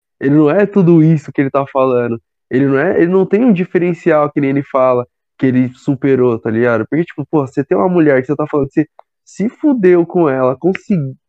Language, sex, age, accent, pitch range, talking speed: Portuguese, male, 20-39, Brazilian, 150-185 Hz, 230 wpm